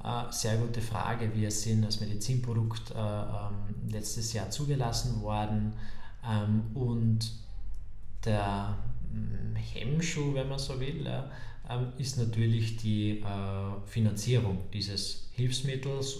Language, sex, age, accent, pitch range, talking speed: German, male, 20-39, German, 100-115 Hz, 90 wpm